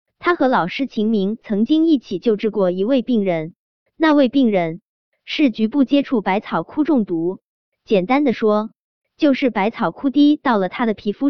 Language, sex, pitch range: Chinese, male, 195-275 Hz